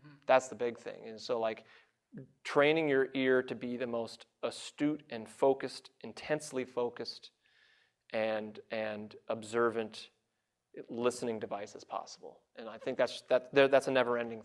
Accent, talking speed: American, 140 wpm